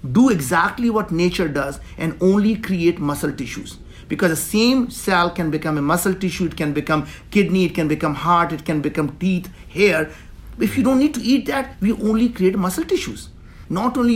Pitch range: 160-210 Hz